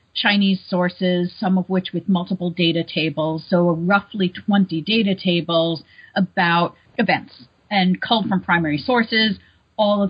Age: 40-59